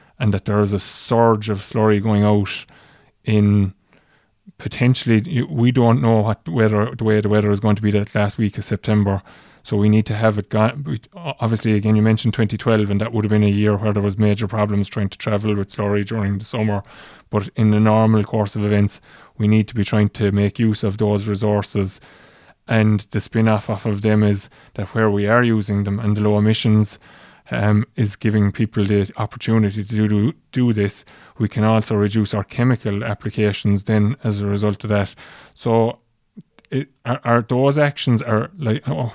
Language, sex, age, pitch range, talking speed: English, male, 20-39, 105-115 Hz, 200 wpm